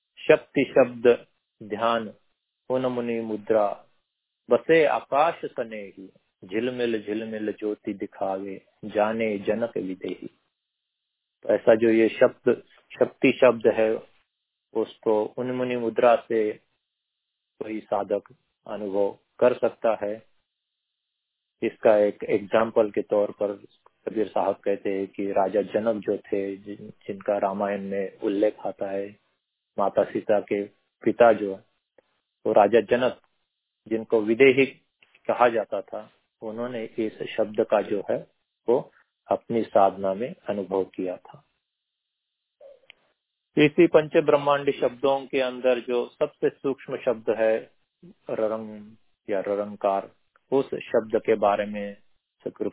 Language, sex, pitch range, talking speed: Hindi, male, 100-120 Hz, 120 wpm